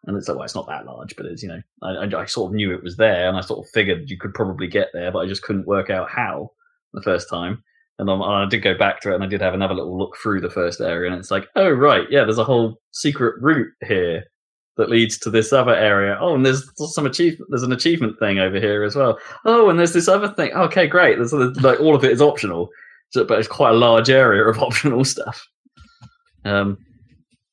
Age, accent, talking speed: 20-39, British, 250 wpm